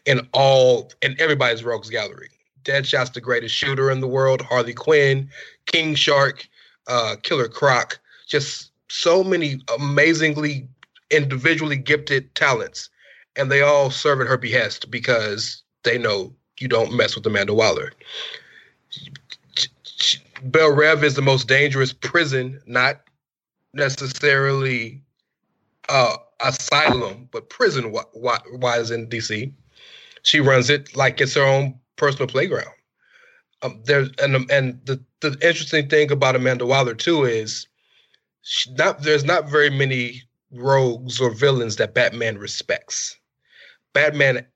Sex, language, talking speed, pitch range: male, English, 125 wpm, 130-150 Hz